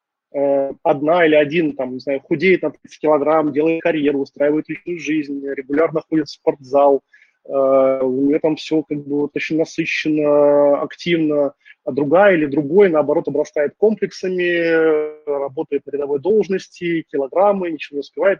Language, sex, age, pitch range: Russian, male, 20-39, 145-180 Hz